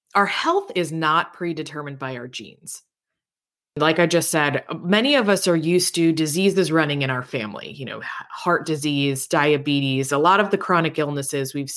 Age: 20-39